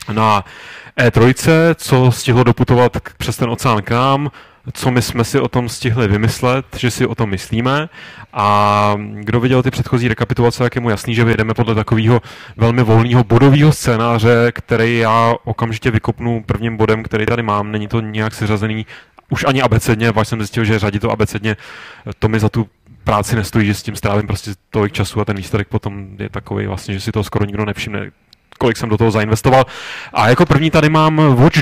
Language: Czech